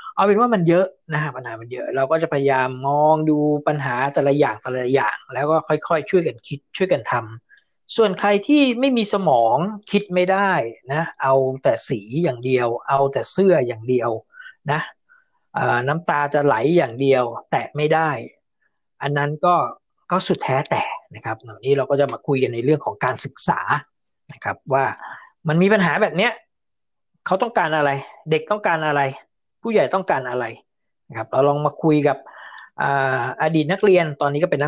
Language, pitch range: Thai, 135-175 Hz